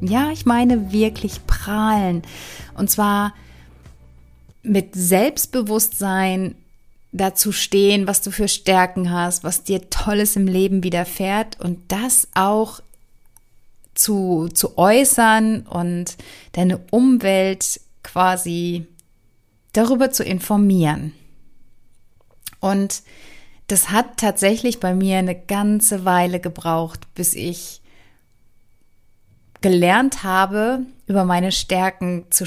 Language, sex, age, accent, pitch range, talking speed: German, female, 30-49, German, 165-205 Hz, 100 wpm